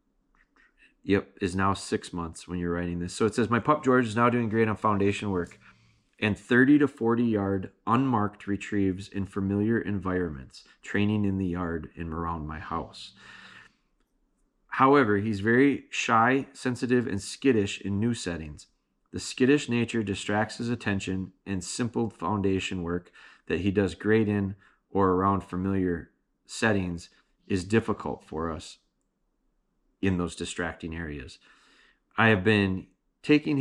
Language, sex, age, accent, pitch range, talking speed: English, male, 30-49, American, 90-110 Hz, 145 wpm